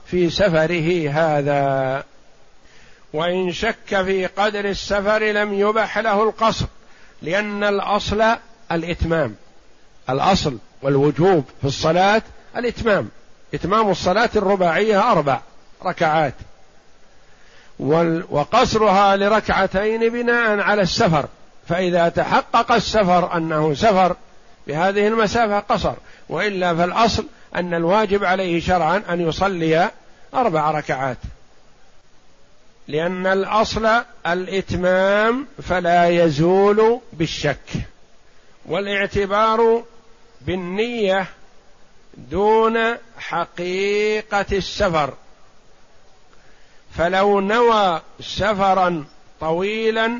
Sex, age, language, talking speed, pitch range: male, 60-79, Arabic, 75 wpm, 170-215 Hz